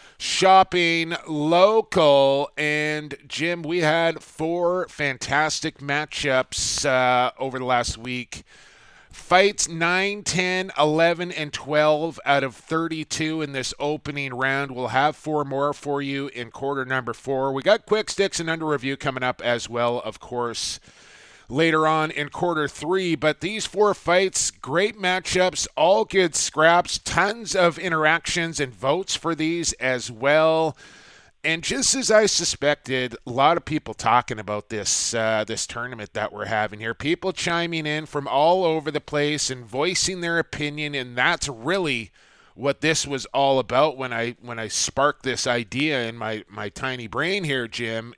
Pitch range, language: 130-170 Hz, English